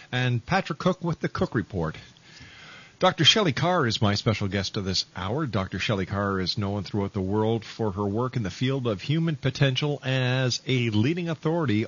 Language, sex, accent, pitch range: English, male, American, 105-140 Hz